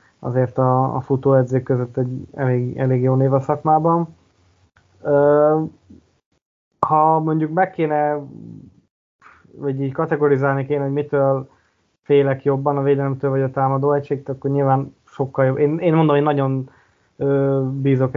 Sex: male